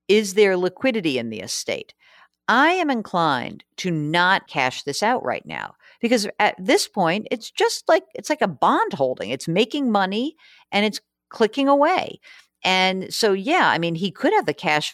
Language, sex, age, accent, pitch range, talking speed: English, female, 50-69, American, 155-250 Hz, 180 wpm